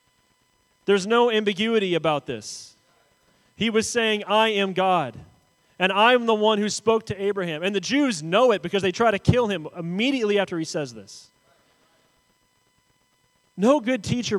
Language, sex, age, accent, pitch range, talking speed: English, male, 30-49, American, 145-225 Hz, 160 wpm